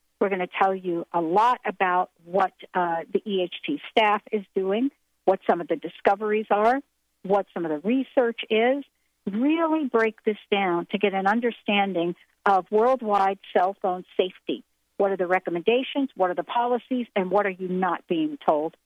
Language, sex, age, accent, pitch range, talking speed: English, female, 60-79, American, 185-250 Hz, 175 wpm